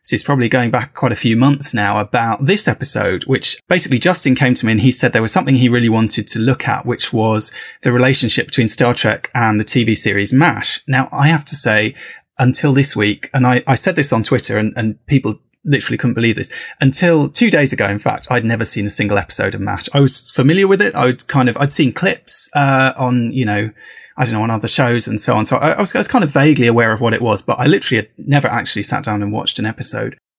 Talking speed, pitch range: 255 wpm, 115-145 Hz